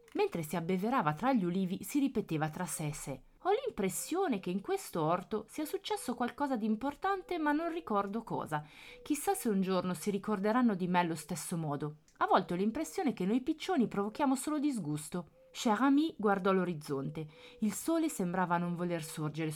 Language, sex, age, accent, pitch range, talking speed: Italian, female, 30-49, native, 160-235 Hz, 170 wpm